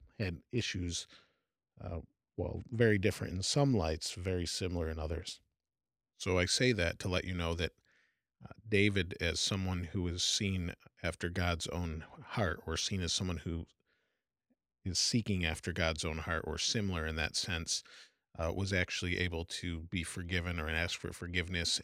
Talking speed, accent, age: 165 wpm, American, 40-59